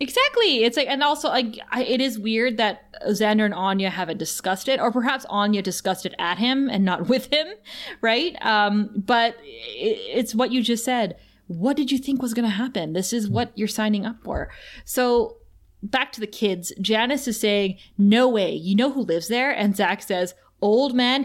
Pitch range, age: 195-250 Hz, 20-39